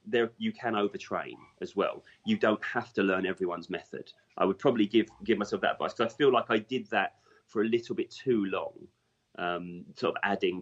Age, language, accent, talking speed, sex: 30-49, English, British, 215 wpm, male